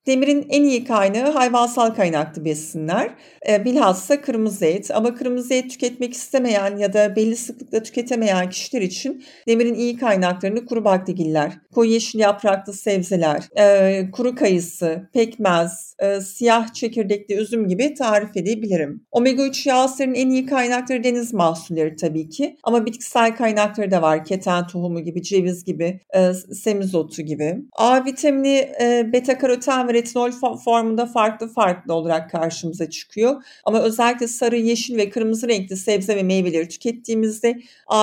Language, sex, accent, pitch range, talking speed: Turkish, female, native, 185-245 Hz, 140 wpm